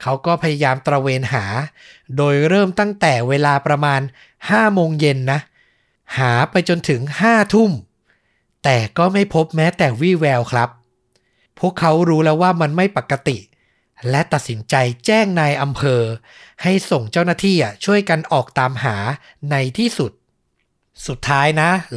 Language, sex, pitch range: Thai, male, 130-170 Hz